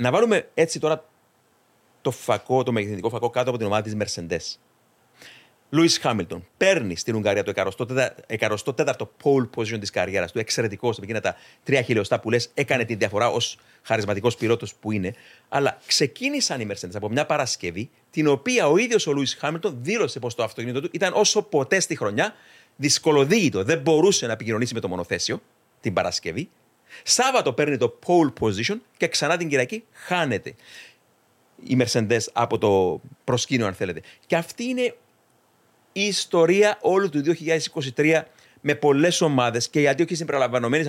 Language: Greek